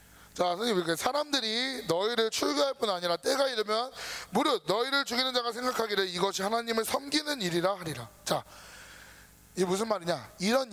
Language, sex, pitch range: Korean, male, 205-275 Hz